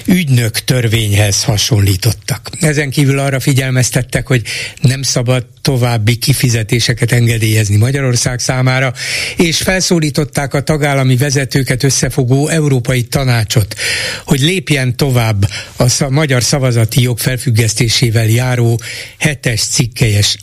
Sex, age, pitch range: male, 60-79, 110-140 Hz